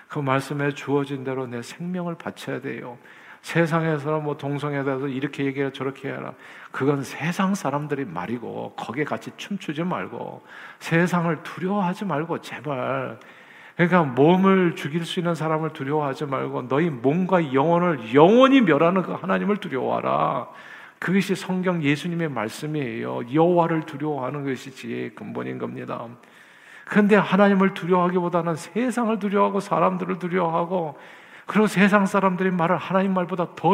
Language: Korean